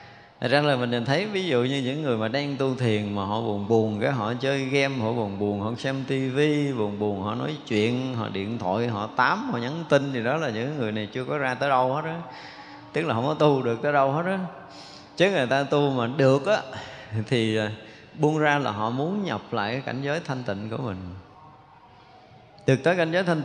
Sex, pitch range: male, 115-150 Hz